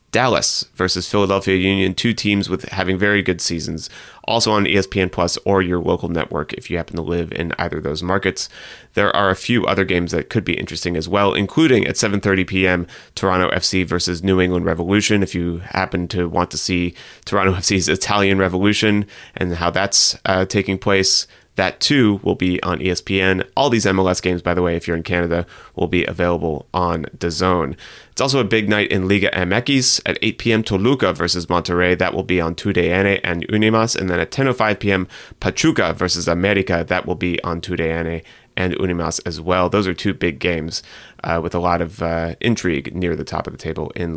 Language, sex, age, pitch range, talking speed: English, male, 30-49, 85-100 Hz, 200 wpm